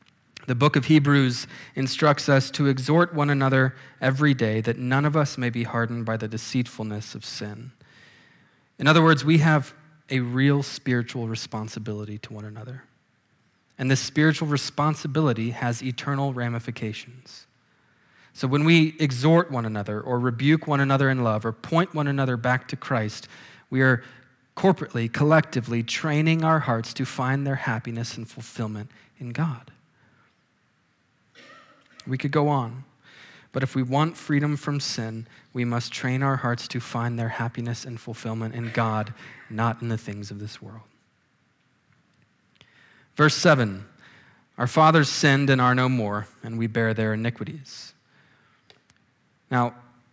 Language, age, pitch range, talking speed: English, 20-39, 115-145 Hz, 145 wpm